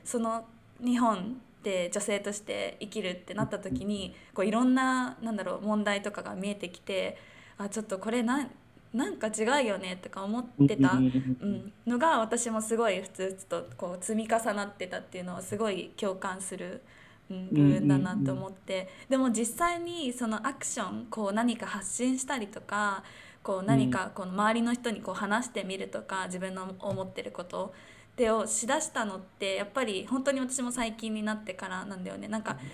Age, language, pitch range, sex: 20-39, Japanese, 190-250 Hz, female